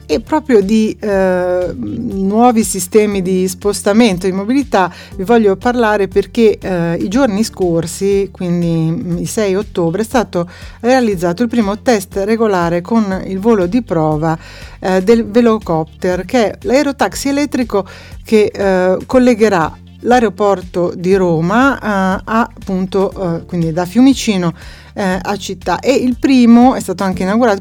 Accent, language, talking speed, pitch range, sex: native, Italian, 140 wpm, 180-235 Hz, female